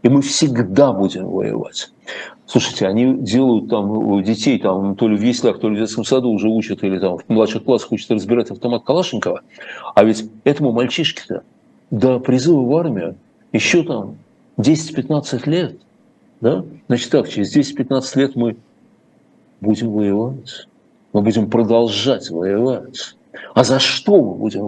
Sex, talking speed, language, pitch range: male, 150 wpm, Russian, 110-140 Hz